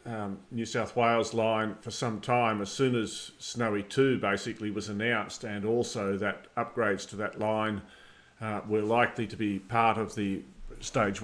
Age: 50-69